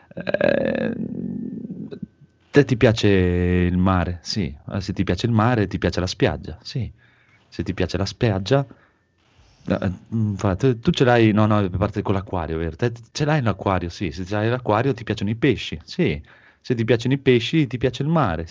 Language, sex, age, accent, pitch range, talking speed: Italian, male, 30-49, native, 95-140 Hz, 180 wpm